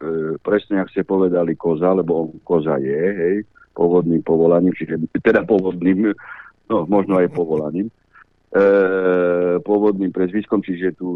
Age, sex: 50-69, male